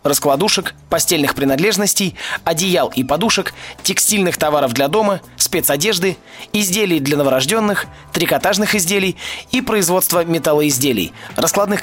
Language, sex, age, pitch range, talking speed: Russian, male, 20-39, 150-205 Hz, 100 wpm